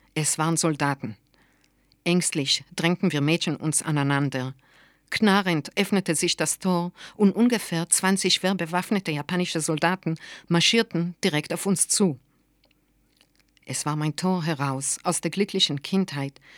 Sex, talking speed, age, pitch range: female, 125 wpm, 50-69, 150-185 Hz